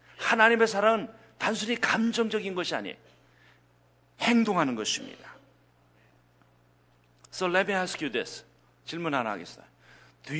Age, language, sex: 50-69, Korean, male